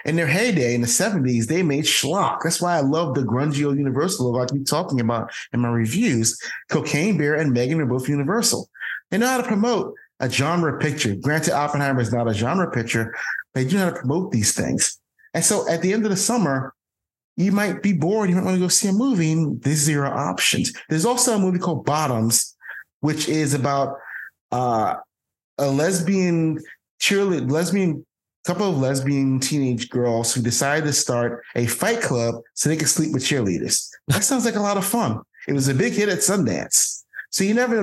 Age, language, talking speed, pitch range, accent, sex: 30-49, English, 205 wpm, 120-175 Hz, American, male